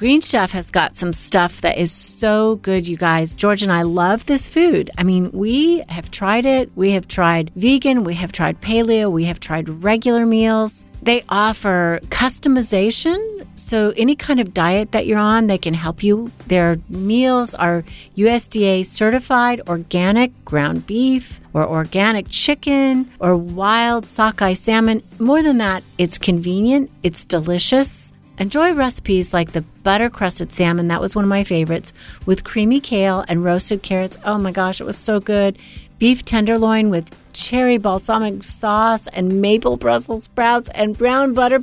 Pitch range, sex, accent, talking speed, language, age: 180-240 Hz, female, American, 160 wpm, English, 40-59